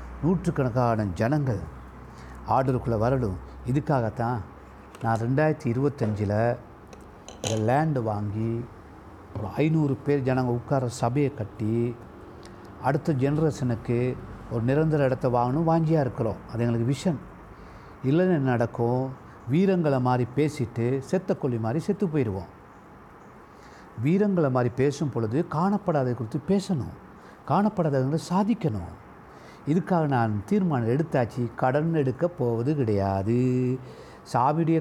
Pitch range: 115-160 Hz